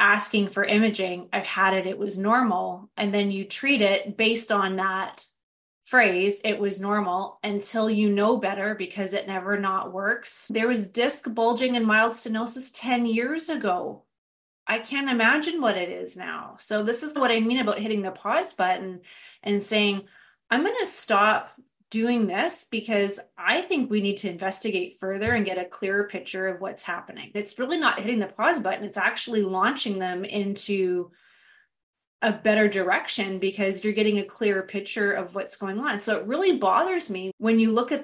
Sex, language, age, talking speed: female, English, 30-49, 185 wpm